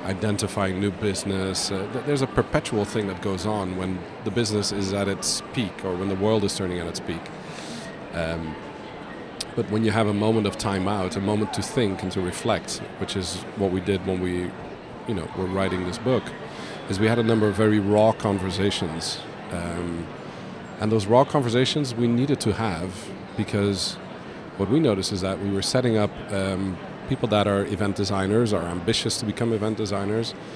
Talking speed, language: 190 wpm, English